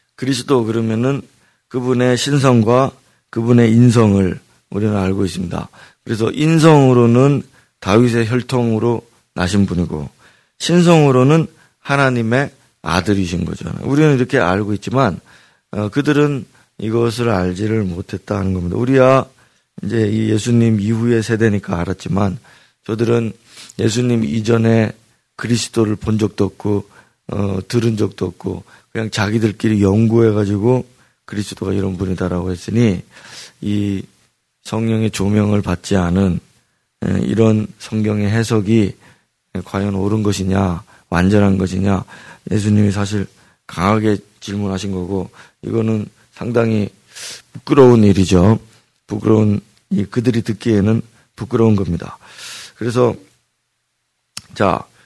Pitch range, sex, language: 100-120 Hz, male, Korean